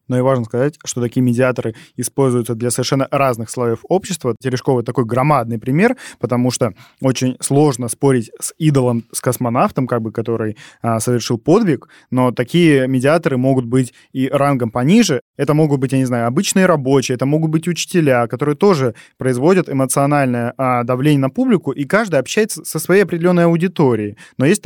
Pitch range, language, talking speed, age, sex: 120-145 Hz, Russian, 160 wpm, 20-39, male